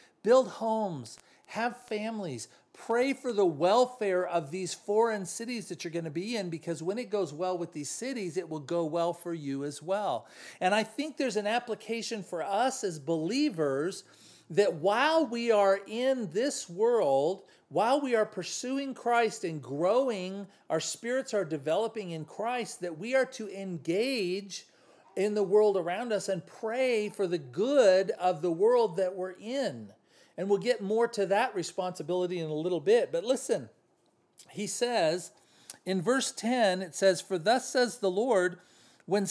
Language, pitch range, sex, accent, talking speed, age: English, 175-240 Hz, male, American, 170 wpm, 40-59